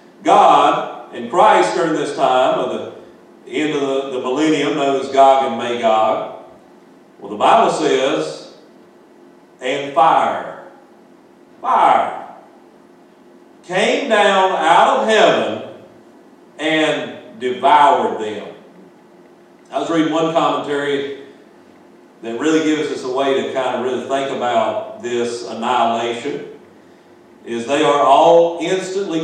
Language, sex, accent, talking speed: English, male, American, 115 wpm